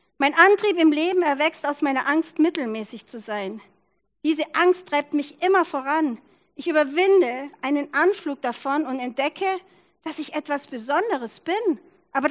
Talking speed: 145 wpm